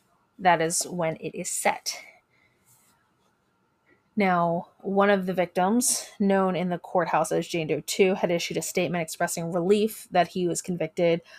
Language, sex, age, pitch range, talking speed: English, female, 20-39, 180-210 Hz, 155 wpm